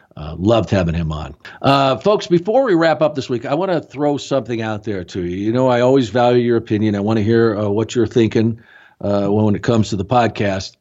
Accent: American